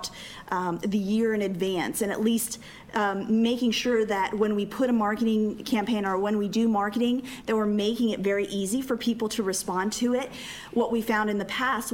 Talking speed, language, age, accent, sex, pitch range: 205 wpm, English, 40-59, American, female, 195-225 Hz